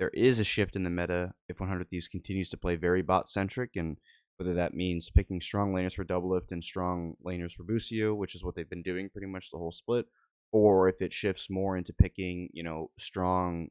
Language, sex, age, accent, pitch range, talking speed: English, male, 20-39, American, 85-105 Hz, 220 wpm